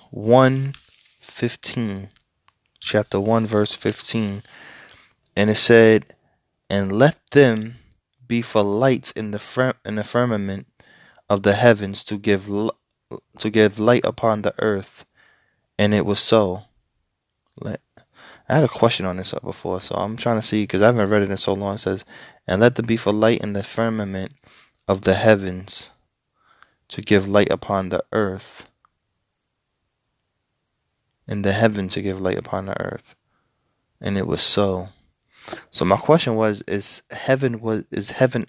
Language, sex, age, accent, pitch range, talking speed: English, male, 20-39, American, 100-115 Hz, 150 wpm